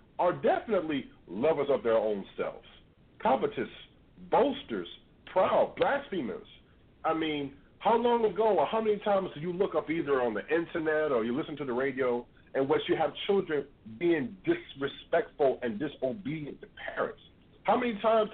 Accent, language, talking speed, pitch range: American, English, 155 wpm, 135-200 Hz